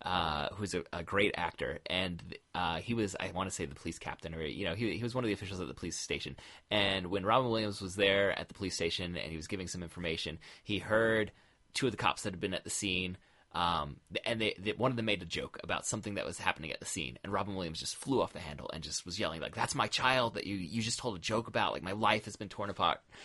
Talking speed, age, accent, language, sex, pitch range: 275 wpm, 20-39, American, English, male, 85-105 Hz